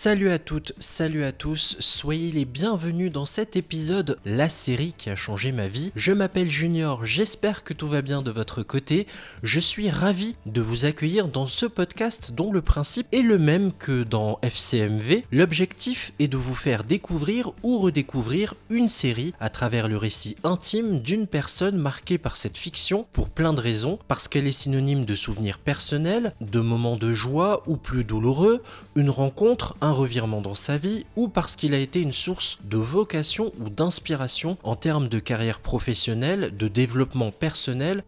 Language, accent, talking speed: French, French, 180 wpm